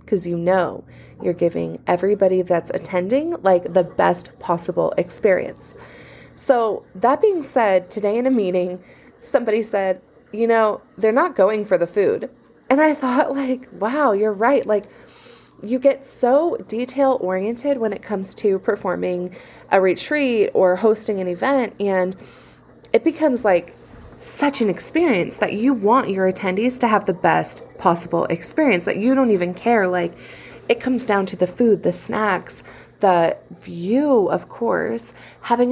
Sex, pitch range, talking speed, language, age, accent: female, 180-235 Hz, 155 wpm, English, 20-39, American